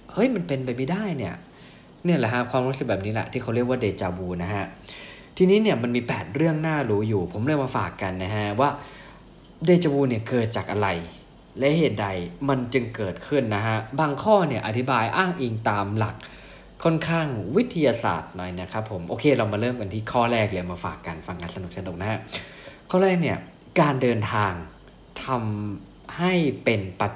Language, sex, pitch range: Thai, male, 100-150 Hz